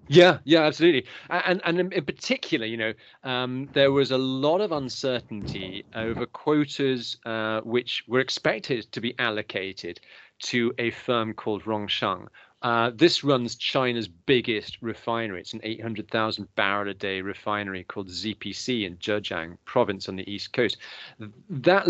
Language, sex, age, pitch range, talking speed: English, male, 30-49, 105-135 Hz, 140 wpm